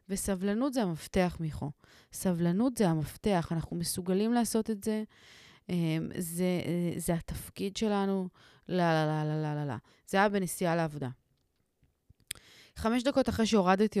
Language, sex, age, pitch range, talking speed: Hebrew, female, 30-49, 170-215 Hz, 130 wpm